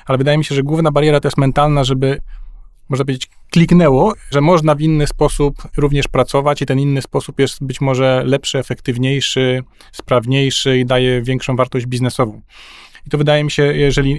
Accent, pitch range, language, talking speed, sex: native, 130-150 Hz, Polish, 180 wpm, male